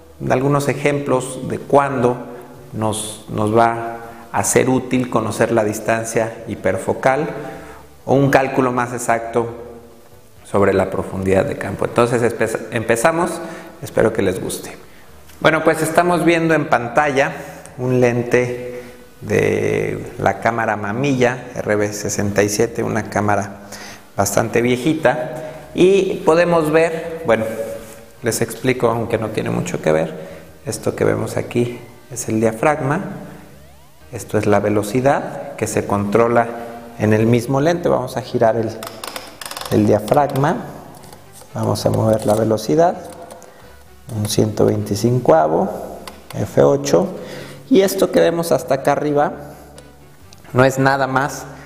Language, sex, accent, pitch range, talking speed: Spanish, male, Mexican, 110-140 Hz, 120 wpm